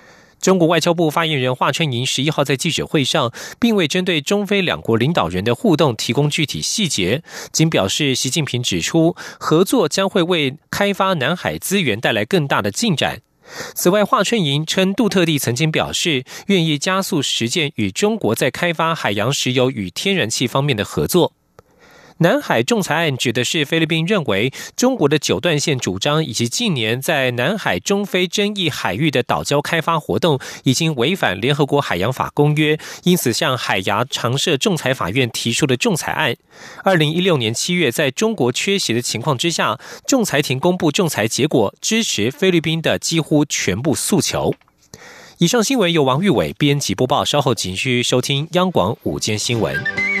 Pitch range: 125-180 Hz